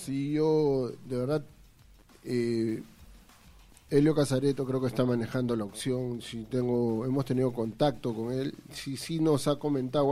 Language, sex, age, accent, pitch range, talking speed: Spanish, male, 40-59, Argentinian, 125-150 Hz, 155 wpm